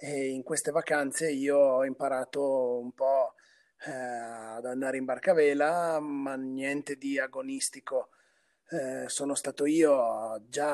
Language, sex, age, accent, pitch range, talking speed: Italian, male, 30-49, native, 130-150 Hz, 140 wpm